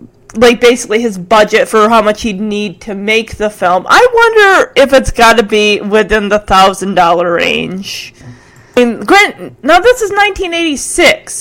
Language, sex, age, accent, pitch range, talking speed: English, female, 30-49, American, 200-315 Hz, 160 wpm